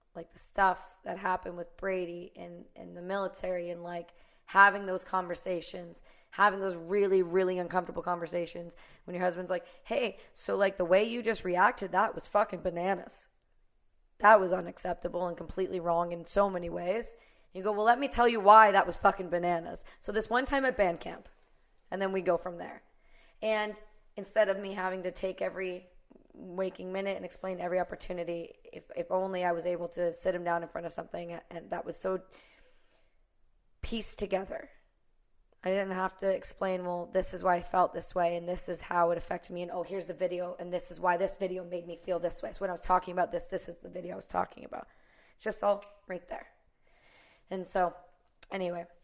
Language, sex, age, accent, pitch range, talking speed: English, female, 20-39, American, 175-195 Hz, 205 wpm